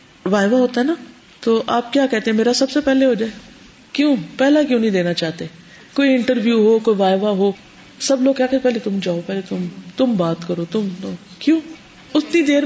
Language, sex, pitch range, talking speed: Urdu, female, 185-250 Hz, 190 wpm